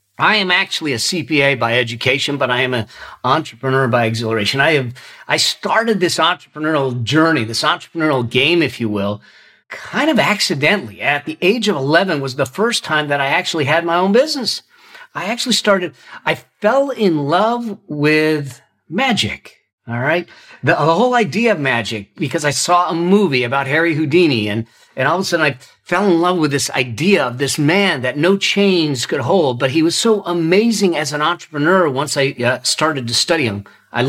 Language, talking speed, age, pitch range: English, 190 wpm, 50-69, 135-195 Hz